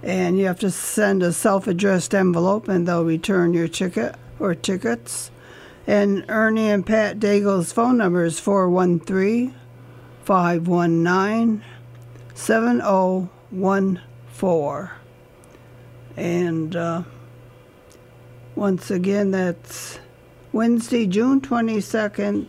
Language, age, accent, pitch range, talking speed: English, 60-79, American, 125-200 Hz, 85 wpm